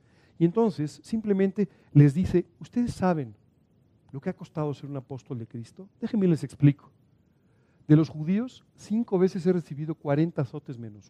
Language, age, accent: Spanish, 50-69, Mexican